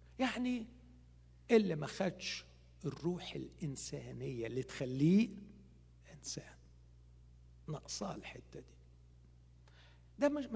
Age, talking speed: 60-79, 80 wpm